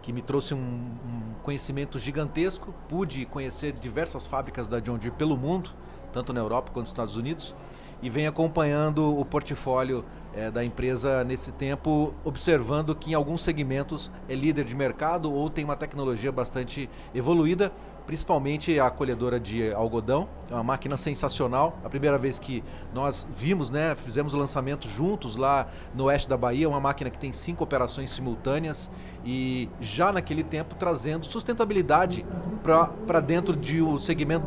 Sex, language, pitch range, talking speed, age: male, Portuguese, 130-165 Hz, 155 wpm, 30-49